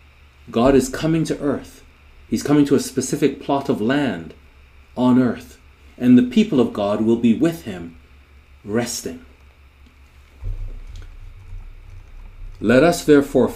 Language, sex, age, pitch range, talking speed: English, male, 40-59, 80-135 Hz, 125 wpm